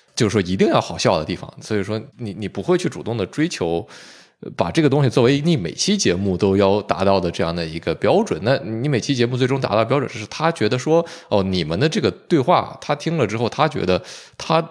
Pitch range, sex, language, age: 95-135 Hz, male, Chinese, 20-39